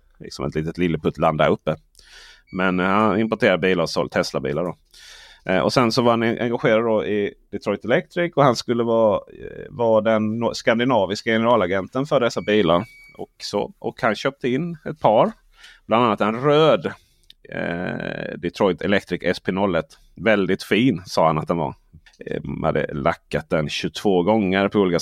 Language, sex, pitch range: Swedish, male, 95-120 Hz